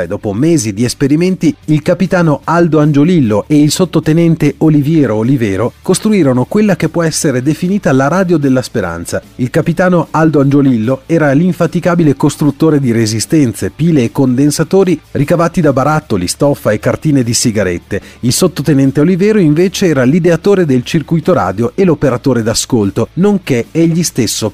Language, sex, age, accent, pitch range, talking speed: Italian, male, 40-59, native, 115-165 Hz, 140 wpm